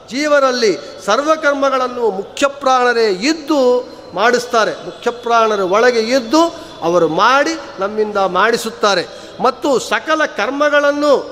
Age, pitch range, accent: 50-69, 215-265 Hz, native